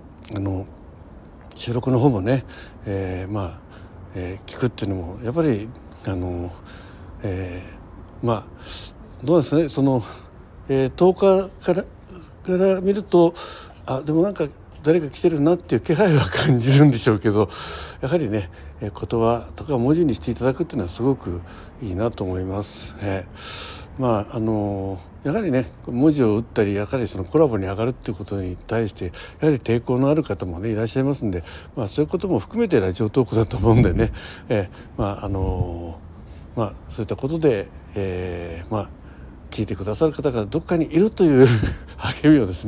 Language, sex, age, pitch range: Japanese, male, 60-79, 95-130 Hz